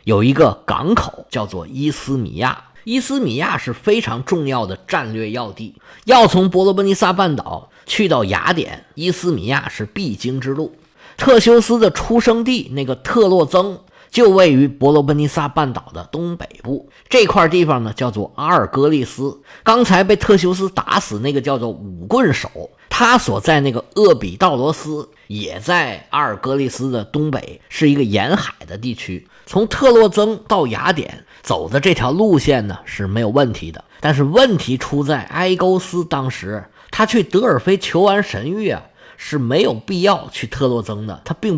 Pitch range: 130-200 Hz